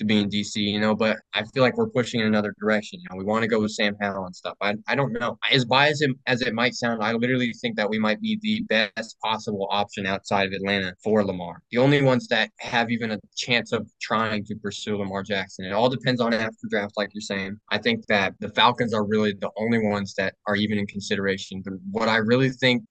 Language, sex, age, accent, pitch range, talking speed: English, male, 20-39, American, 105-135 Hz, 255 wpm